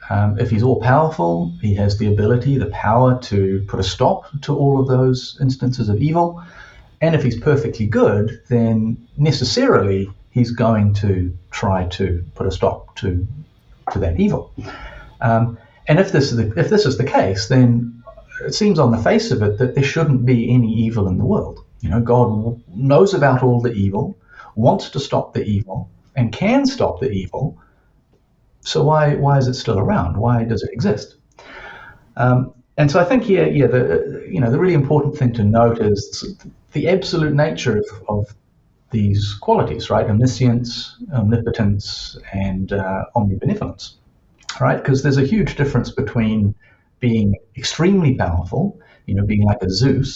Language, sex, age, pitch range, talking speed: English, male, 40-59, 105-140 Hz, 170 wpm